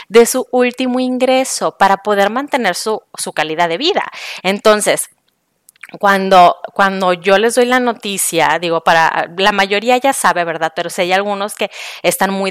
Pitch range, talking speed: 180-220 Hz, 165 wpm